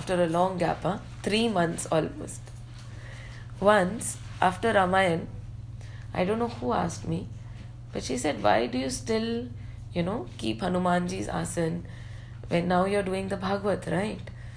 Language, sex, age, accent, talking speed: English, female, 30-49, Indian, 150 wpm